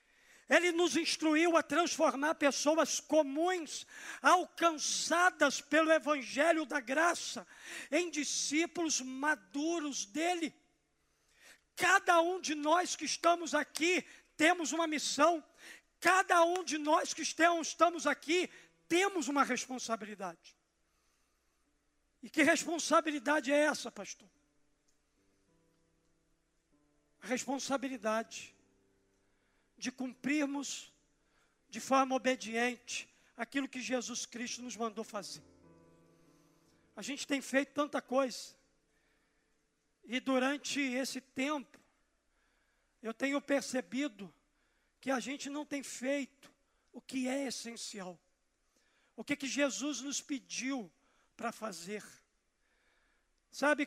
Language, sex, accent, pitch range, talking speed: Portuguese, male, Brazilian, 225-310 Hz, 95 wpm